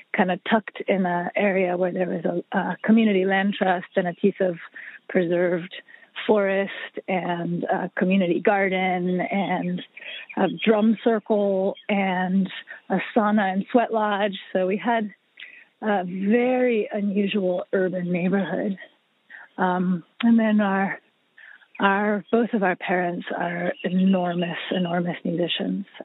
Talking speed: 125 wpm